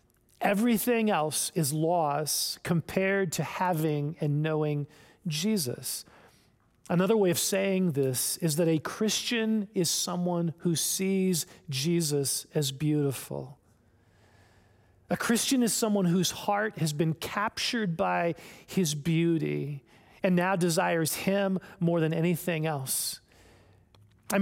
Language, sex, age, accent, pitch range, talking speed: English, male, 40-59, American, 145-185 Hz, 115 wpm